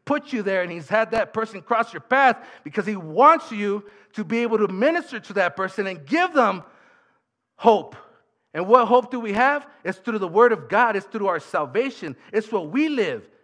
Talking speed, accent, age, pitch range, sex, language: 210 wpm, American, 50-69, 130-215 Hz, male, English